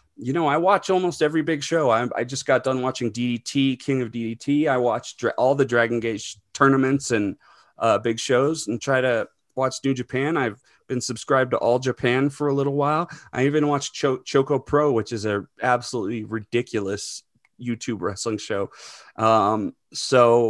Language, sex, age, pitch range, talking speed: English, male, 30-49, 115-140 Hz, 180 wpm